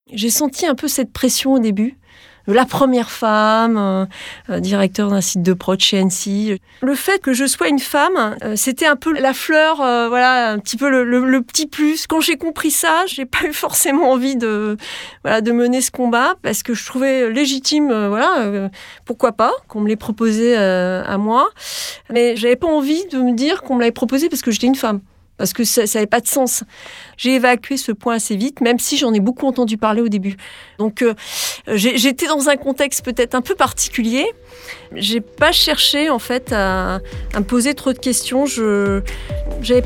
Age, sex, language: 40-59, female, French